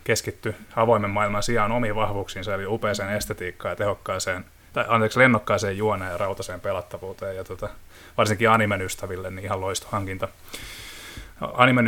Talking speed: 135 wpm